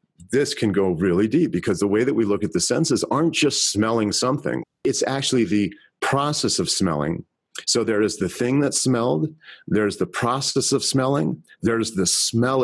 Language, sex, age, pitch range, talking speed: English, male, 40-59, 105-135 Hz, 185 wpm